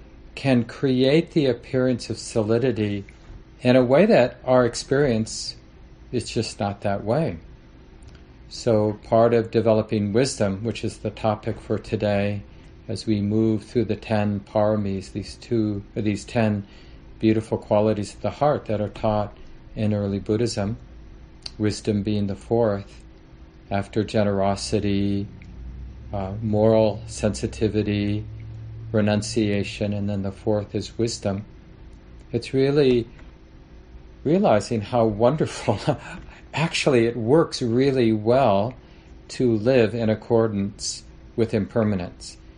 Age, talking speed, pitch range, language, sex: 40-59, 115 wpm, 100-115 Hz, English, male